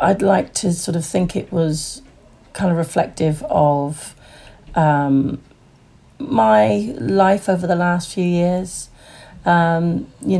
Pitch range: 150-175 Hz